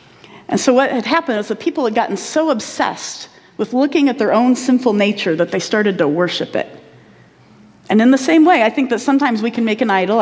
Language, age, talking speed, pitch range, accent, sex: English, 40-59, 230 wpm, 200-275 Hz, American, female